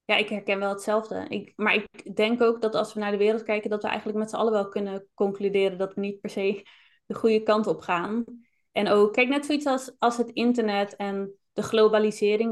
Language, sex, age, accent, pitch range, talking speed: Dutch, female, 20-39, Dutch, 205-230 Hz, 230 wpm